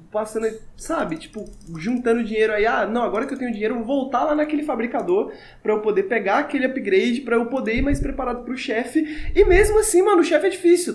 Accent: Brazilian